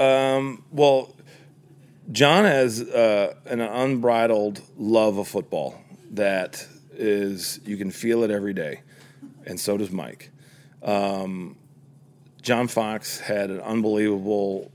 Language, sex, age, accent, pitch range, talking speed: English, male, 40-59, American, 95-120 Hz, 115 wpm